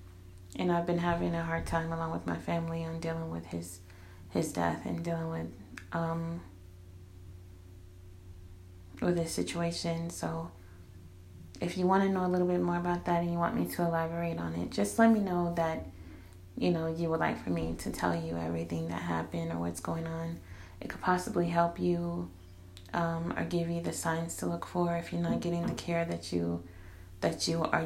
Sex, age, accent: female, 30-49, American